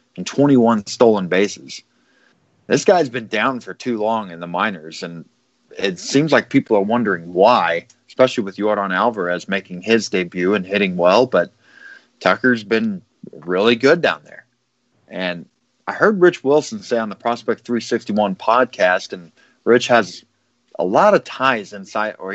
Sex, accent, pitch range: male, American, 95-130 Hz